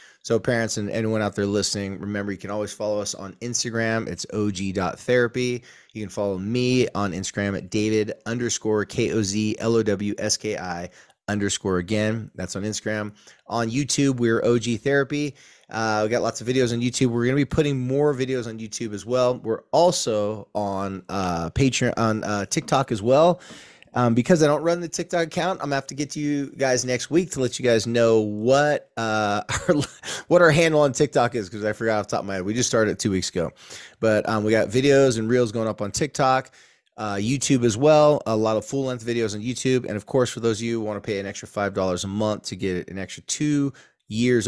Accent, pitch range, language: American, 100-125 Hz, English